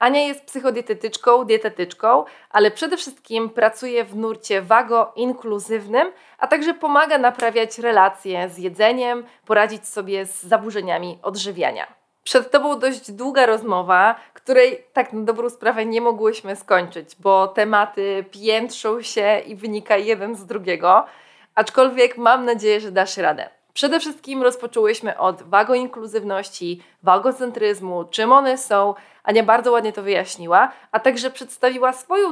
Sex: female